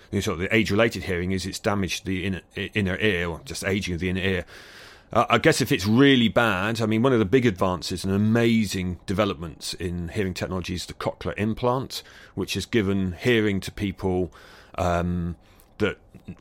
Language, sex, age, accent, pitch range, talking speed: English, male, 30-49, British, 90-110 Hz, 180 wpm